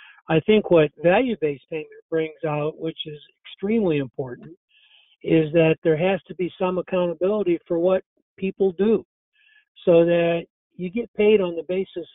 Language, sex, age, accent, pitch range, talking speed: English, male, 60-79, American, 160-190 Hz, 155 wpm